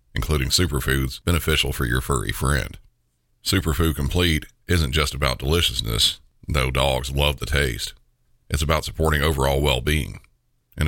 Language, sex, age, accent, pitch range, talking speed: English, male, 40-59, American, 65-80 Hz, 130 wpm